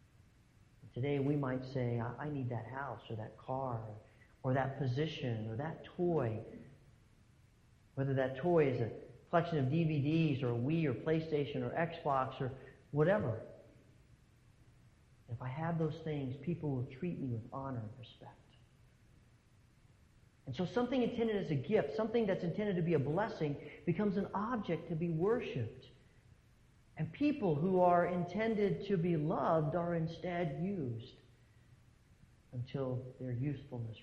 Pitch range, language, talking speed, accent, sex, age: 120-175 Hz, English, 145 wpm, American, male, 40-59